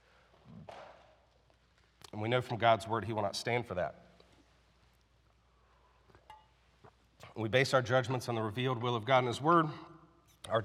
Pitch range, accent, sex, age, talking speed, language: 110-145 Hz, American, male, 40-59, 145 wpm, English